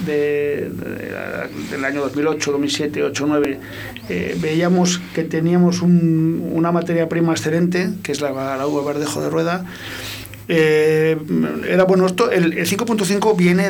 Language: Spanish